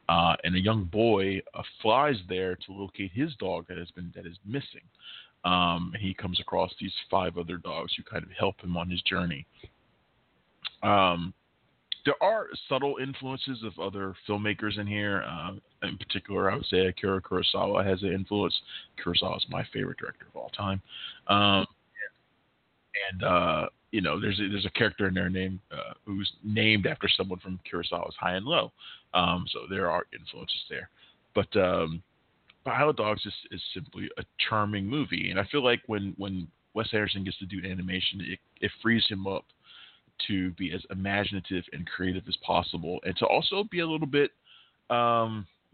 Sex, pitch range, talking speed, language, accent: male, 90-105 Hz, 180 wpm, English, American